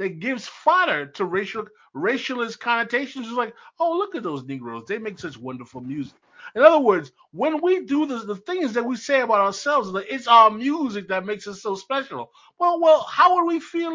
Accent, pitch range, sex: American, 195-295 Hz, male